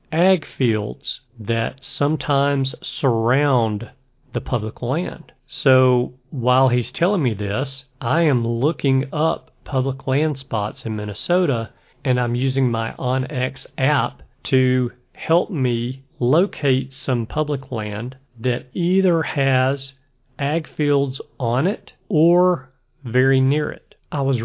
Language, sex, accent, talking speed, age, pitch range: English, male, American, 120 wpm, 40-59, 115-135 Hz